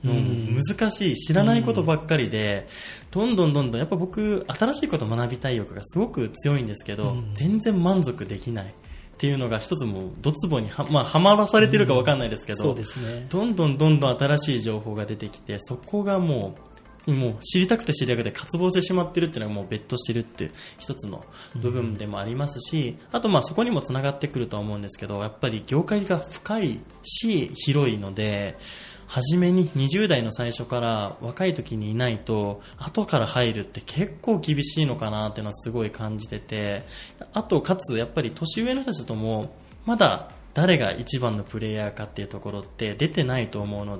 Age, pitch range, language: 20-39, 110-175 Hz, Japanese